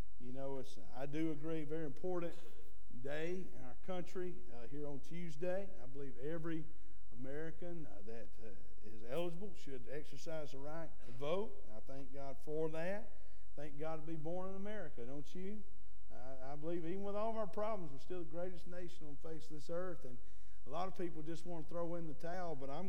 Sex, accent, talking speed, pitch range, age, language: male, American, 205 wpm, 135-175 Hz, 50-69, English